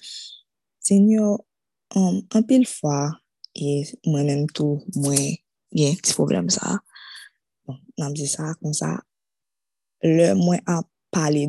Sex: female